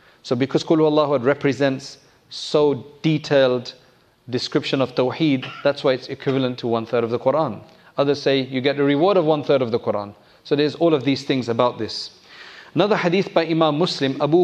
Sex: male